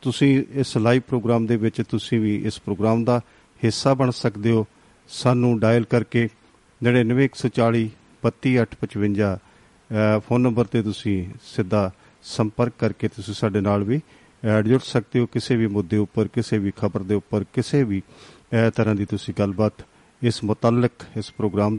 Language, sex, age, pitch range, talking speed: Punjabi, male, 50-69, 105-120 Hz, 145 wpm